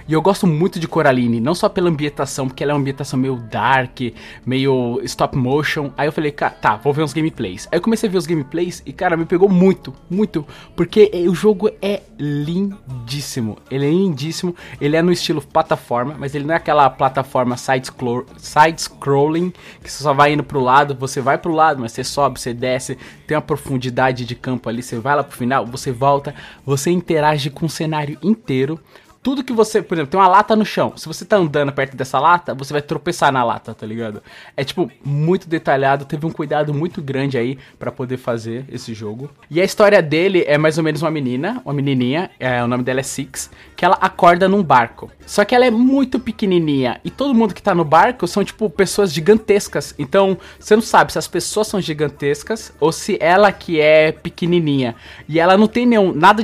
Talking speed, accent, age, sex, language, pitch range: 210 wpm, Brazilian, 20-39, male, Portuguese, 130-175 Hz